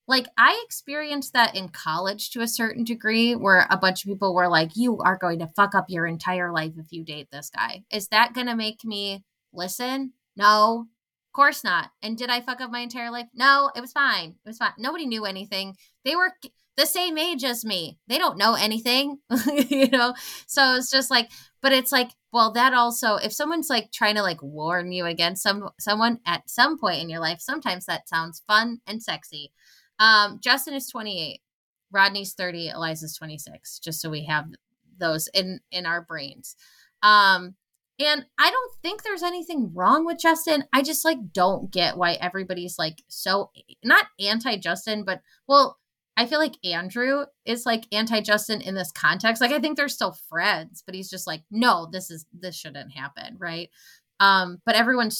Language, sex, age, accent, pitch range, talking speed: English, female, 20-39, American, 180-250 Hz, 190 wpm